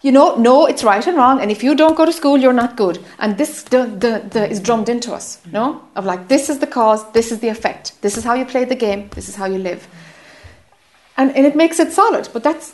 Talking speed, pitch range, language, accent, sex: 270 wpm, 210-270 Hz, English, British, female